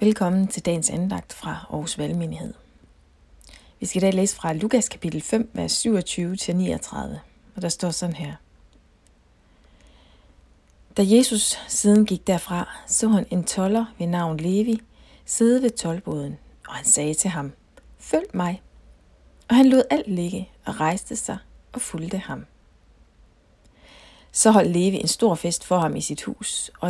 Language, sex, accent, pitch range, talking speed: Danish, female, native, 160-215 Hz, 150 wpm